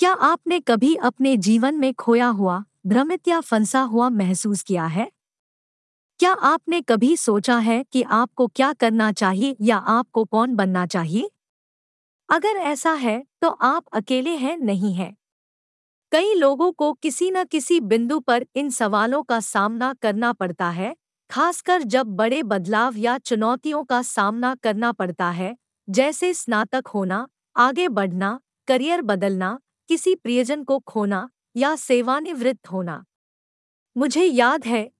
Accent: native